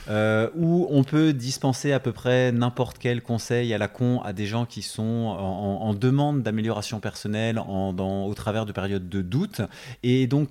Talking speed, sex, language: 195 wpm, male, French